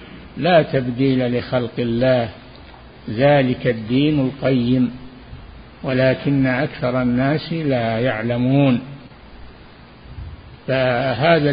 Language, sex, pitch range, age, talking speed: Arabic, male, 115-140 Hz, 50-69, 70 wpm